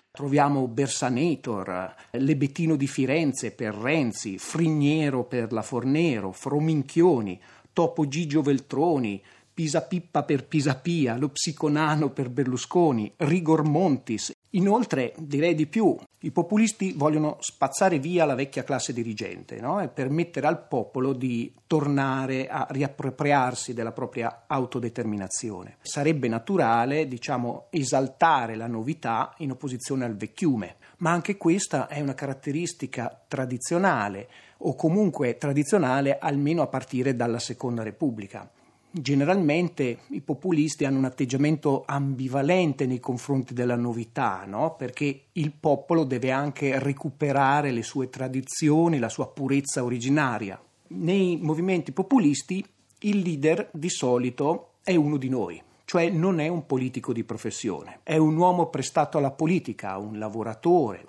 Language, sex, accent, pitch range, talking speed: Italian, male, native, 125-160 Hz, 125 wpm